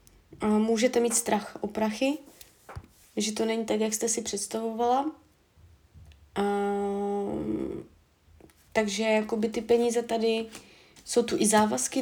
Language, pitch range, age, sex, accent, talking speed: Czech, 200-235 Hz, 20-39, female, native, 105 wpm